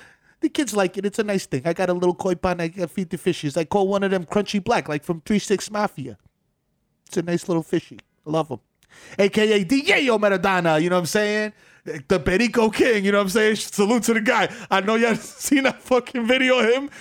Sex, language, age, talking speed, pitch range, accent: male, English, 30-49, 235 wpm, 135-200 Hz, American